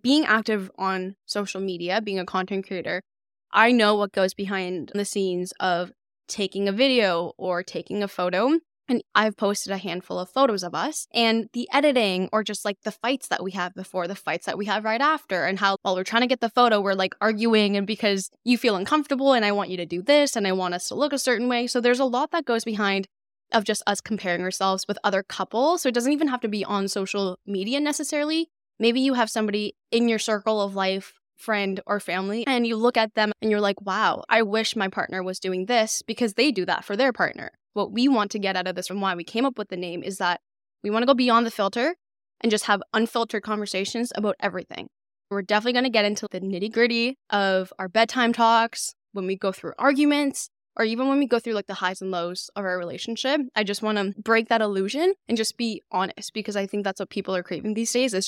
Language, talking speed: English, 240 wpm